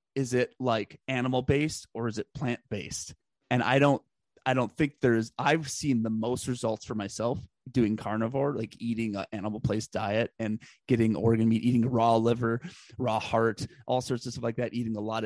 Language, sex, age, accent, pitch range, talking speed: English, male, 30-49, American, 115-130 Hz, 195 wpm